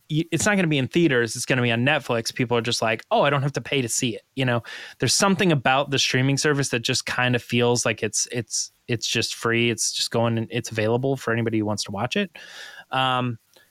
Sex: male